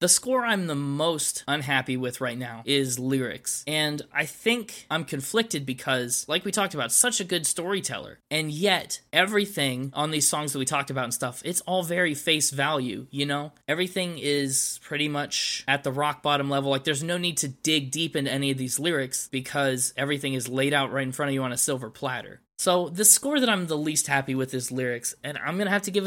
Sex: male